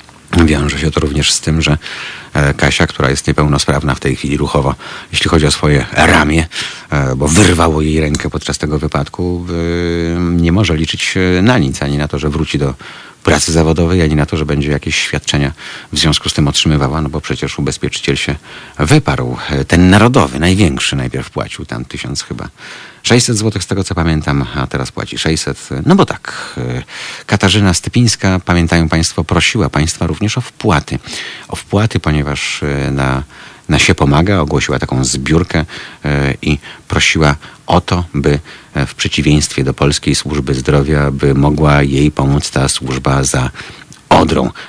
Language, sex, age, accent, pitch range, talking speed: Polish, male, 40-59, native, 70-85 Hz, 155 wpm